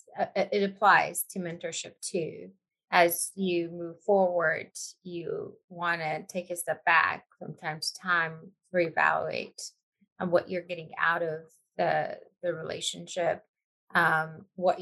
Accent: American